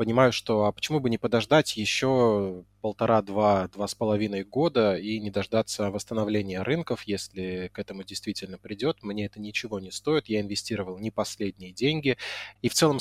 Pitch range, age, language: 105-130 Hz, 20-39, Russian